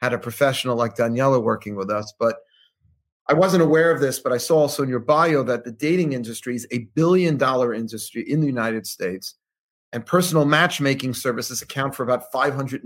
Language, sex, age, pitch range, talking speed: English, male, 40-59, 115-145 Hz, 195 wpm